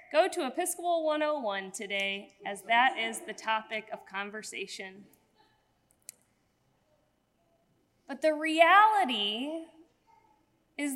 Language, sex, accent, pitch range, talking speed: English, female, American, 230-315 Hz, 90 wpm